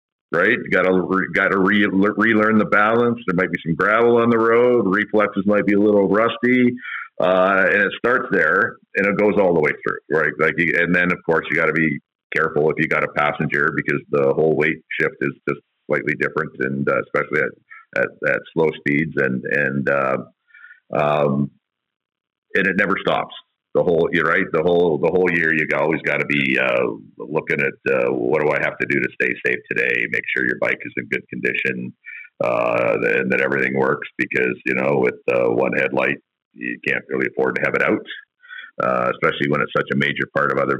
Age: 50-69